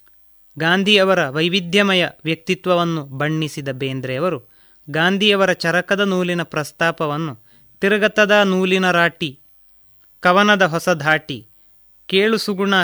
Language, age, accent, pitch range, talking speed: Kannada, 30-49, native, 150-190 Hz, 75 wpm